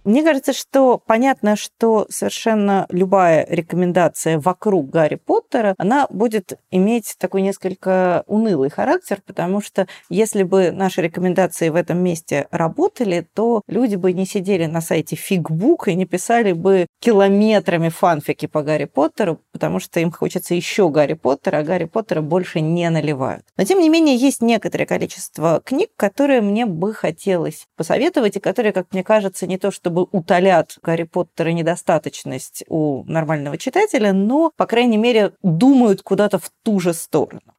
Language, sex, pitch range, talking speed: Russian, female, 165-225 Hz, 155 wpm